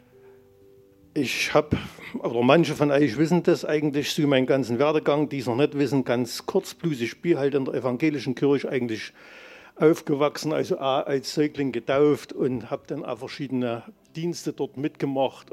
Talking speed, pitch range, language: 160 wpm, 130-160 Hz, German